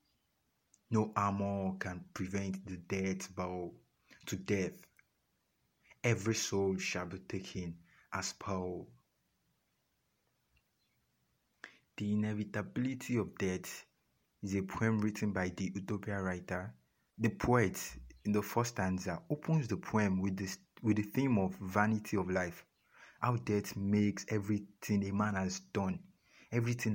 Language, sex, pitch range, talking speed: English, male, 95-110 Hz, 120 wpm